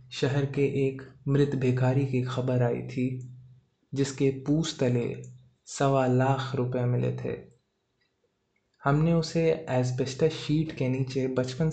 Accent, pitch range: native, 125-140 Hz